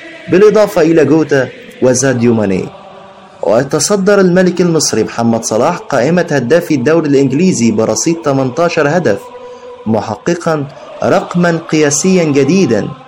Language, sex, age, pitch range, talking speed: Arabic, male, 30-49, 115-170 Hz, 95 wpm